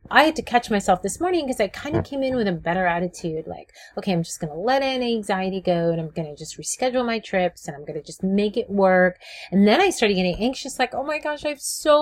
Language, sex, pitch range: English, female, 180-245 Hz